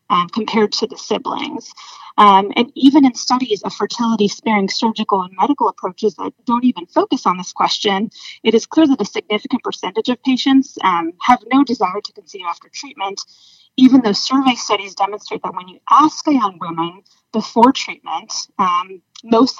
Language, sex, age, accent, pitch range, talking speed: English, female, 30-49, American, 205-270 Hz, 170 wpm